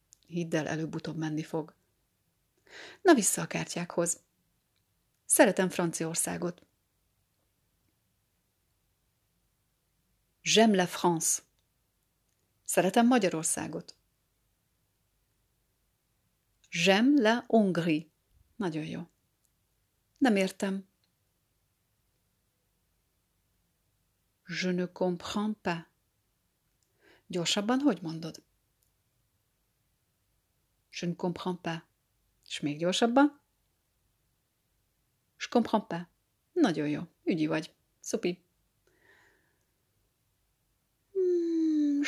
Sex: female